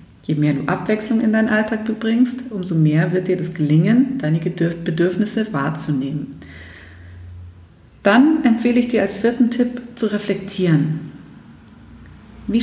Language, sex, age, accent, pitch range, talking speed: German, female, 30-49, German, 160-215 Hz, 130 wpm